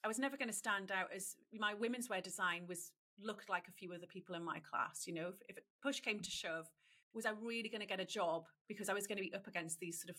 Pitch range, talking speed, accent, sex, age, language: 180-220 Hz, 285 wpm, British, female, 30-49, English